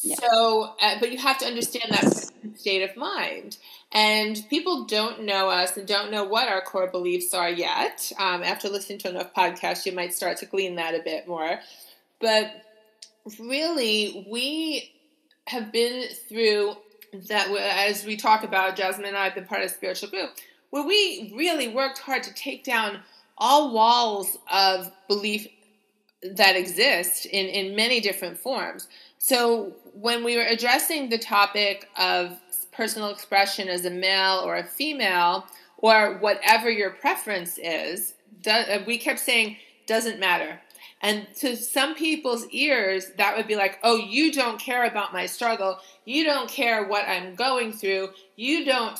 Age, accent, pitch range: 30-49, American, 190-240 Hz